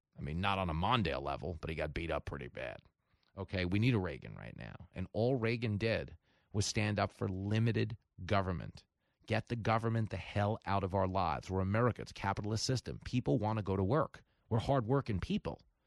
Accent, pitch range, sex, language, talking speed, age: American, 100-150 Hz, male, English, 210 wpm, 40-59